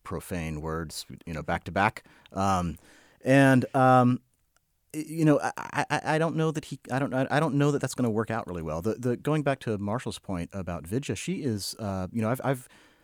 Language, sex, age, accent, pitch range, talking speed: English, male, 30-49, American, 80-110 Hz, 225 wpm